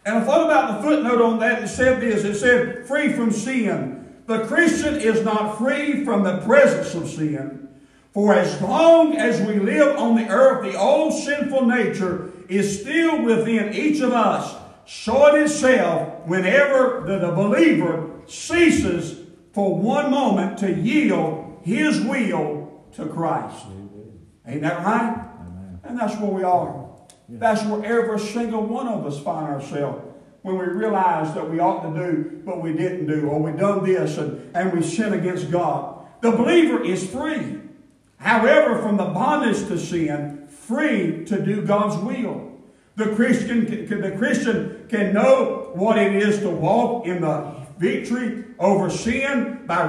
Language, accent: English, American